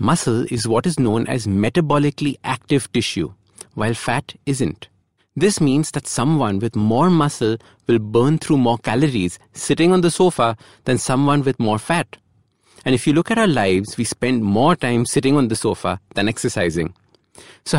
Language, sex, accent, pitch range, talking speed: English, male, Indian, 105-150 Hz, 170 wpm